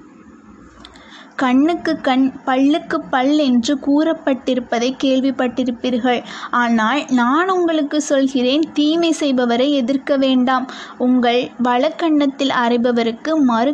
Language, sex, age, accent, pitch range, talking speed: Tamil, female, 20-39, native, 245-295 Hz, 85 wpm